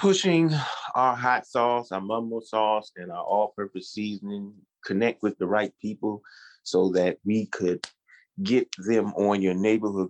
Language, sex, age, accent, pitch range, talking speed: English, male, 30-49, American, 95-115 Hz, 150 wpm